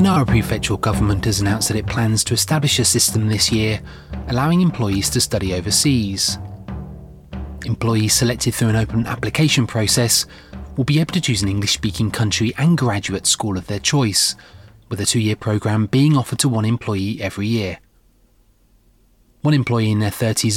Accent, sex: British, male